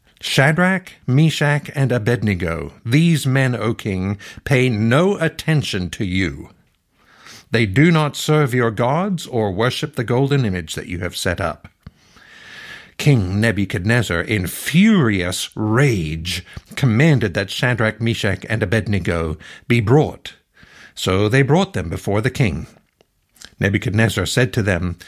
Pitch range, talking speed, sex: 95-130 Hz, 125 wpm, male